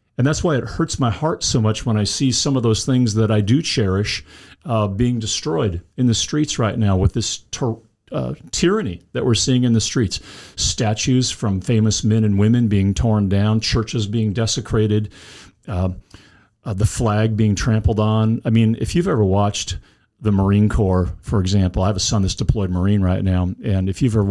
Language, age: English, 50-69